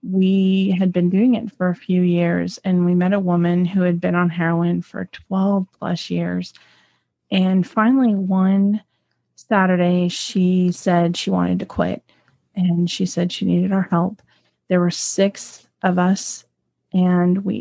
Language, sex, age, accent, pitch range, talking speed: English, female, 30-49, American, 175-195 Hz, 155 wpm